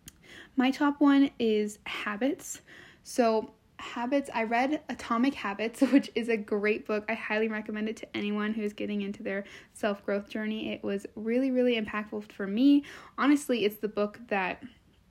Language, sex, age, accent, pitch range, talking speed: English, female, 10-29, American, 215-250 Hz, 165 wpm